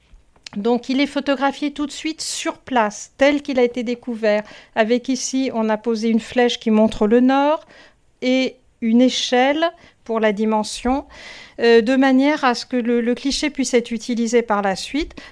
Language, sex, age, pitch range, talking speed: French, female, 50-69, 215-260 Hz, 180 wpm